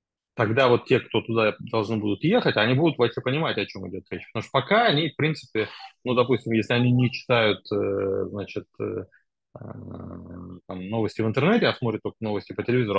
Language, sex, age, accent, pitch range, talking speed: Russian, male, 20-39, native, 100-125 Hz, 180 wpm